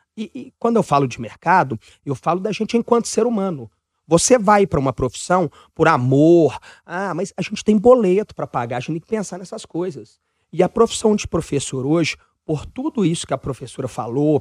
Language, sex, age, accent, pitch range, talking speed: Portuguese, male, 30-49, Brazilian, 135-210 Hz, 205 wpm